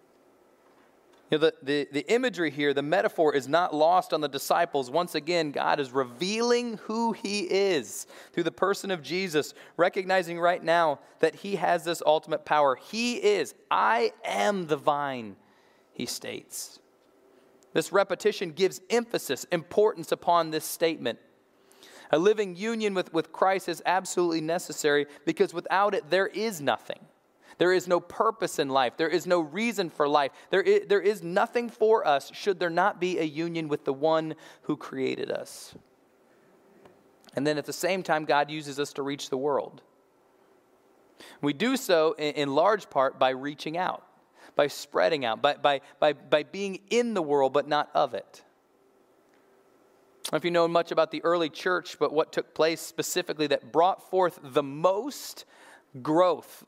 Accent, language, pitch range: American, English, 150-190 Hz